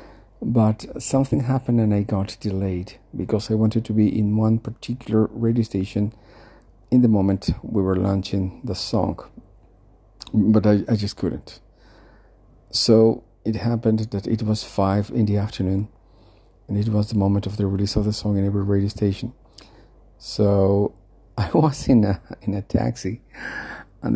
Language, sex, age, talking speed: English, male, 50-69, 160 wpm